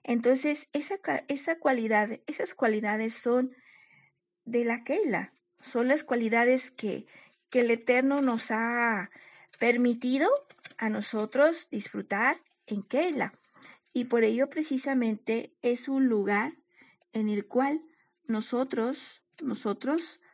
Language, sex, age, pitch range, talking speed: Spanish, female, 50-69, 215-275 Hz, 110 wpm